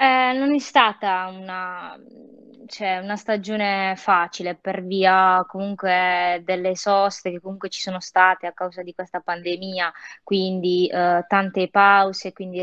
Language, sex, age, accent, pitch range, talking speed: Italian, female, 20-39, native, 180-200 Hz, 135 wpm